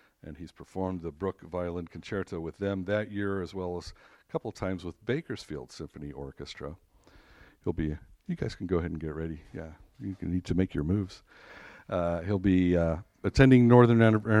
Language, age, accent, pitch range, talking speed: English, 50-69, American, 85-100 Hz, 180 wpm